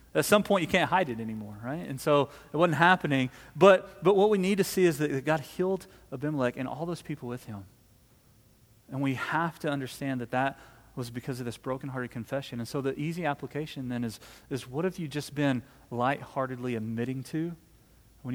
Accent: American